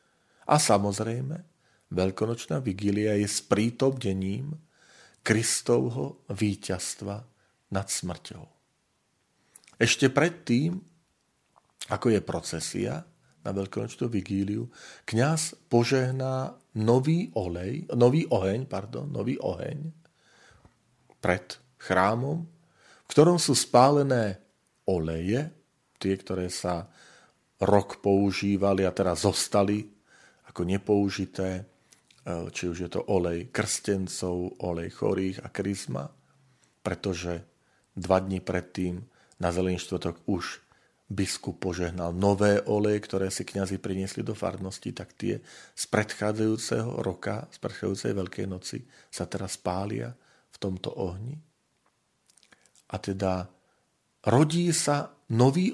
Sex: male